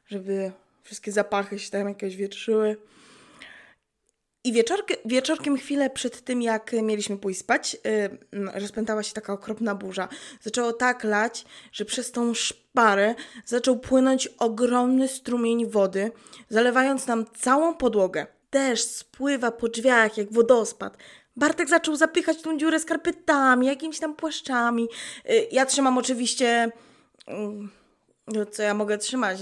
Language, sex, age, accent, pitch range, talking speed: Polish, female, 20-39, native, 200-255 Hz, 130 wpm